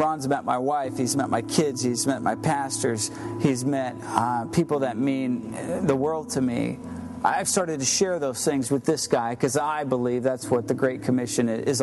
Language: English